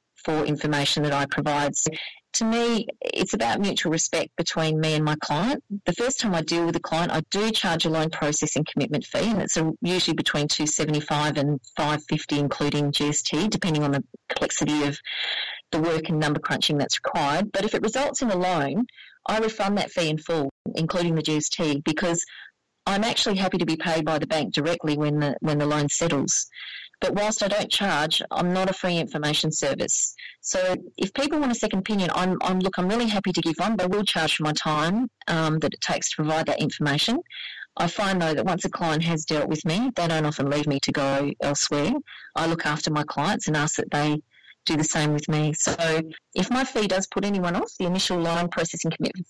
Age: 30-49